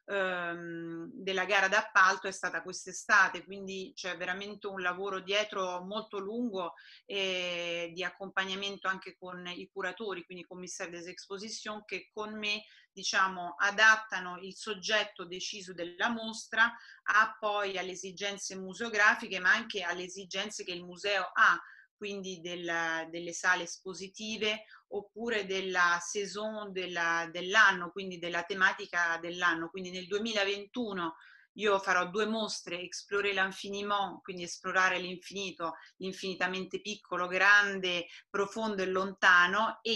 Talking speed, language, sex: 120 wpm, Italian, female